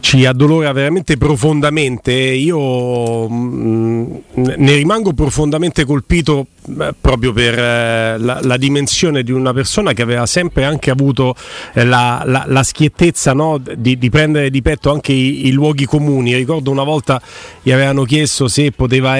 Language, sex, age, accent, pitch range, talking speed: Italian, male, 40-59, native, 125-150 Hz, 155 wpm